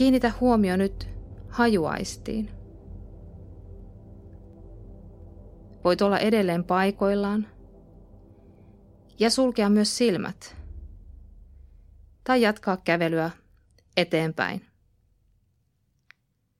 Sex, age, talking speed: female, 20-39, 60 wpm